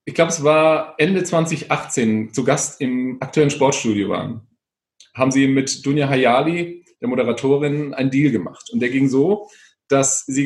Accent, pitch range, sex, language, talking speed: German, 125-155 Hz, male, German, 160 wpm